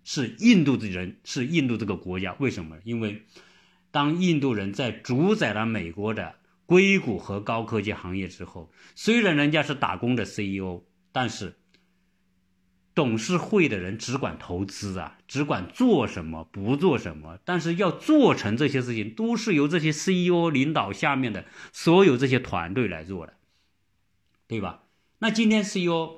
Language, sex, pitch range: Chinese, male, 100-160 Hz